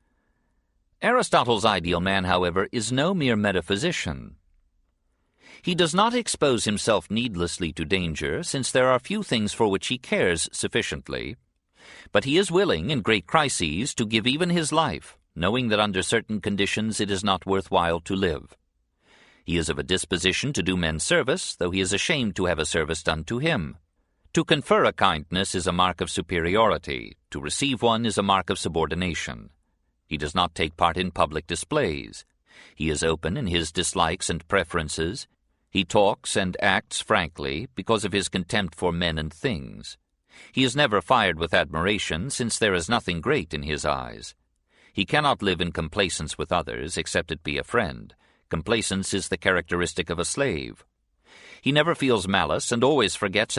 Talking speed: 175 wpm